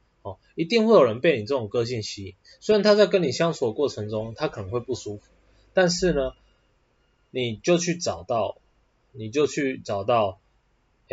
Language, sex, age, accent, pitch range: Chinese, male, 20-39, native, 105-140 Hz